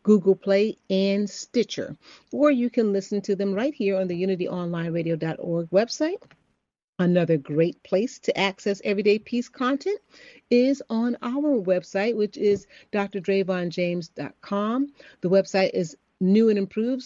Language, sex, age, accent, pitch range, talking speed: English, female, 40-59, American, 170-215 Hz, 130 wpm